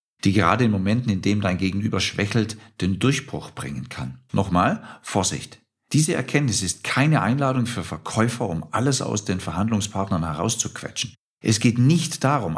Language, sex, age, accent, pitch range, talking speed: German, male, 50-69, German, 90-120 Hz, 155 wpm